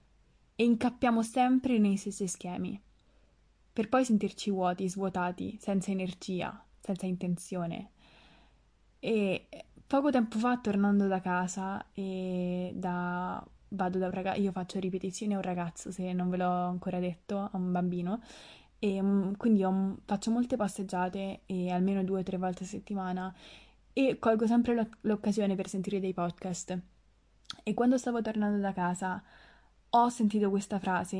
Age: 20-39